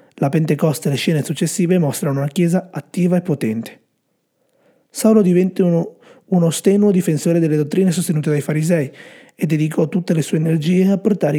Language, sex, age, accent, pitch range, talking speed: Italian, male, 30-49, native, 135-175 Hz, 165 wpm